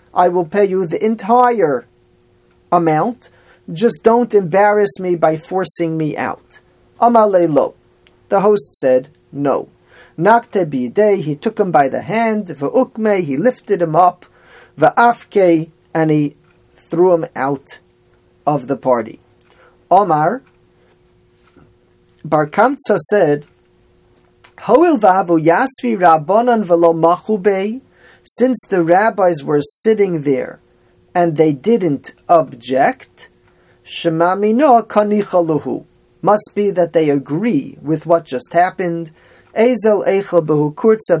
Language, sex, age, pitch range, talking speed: English, male, 40-59, 155-210 Hz, 100 wpm